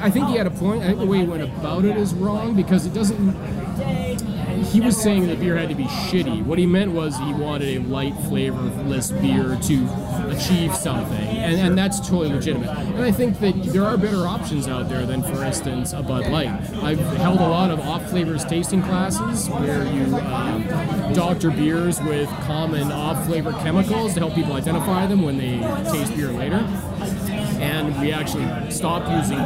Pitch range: 155-190 Hz